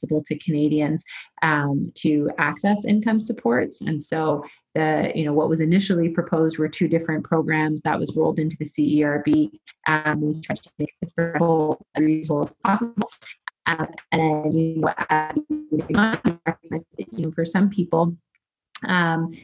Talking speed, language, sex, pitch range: 130 wpm, English, female, 155-170 Hz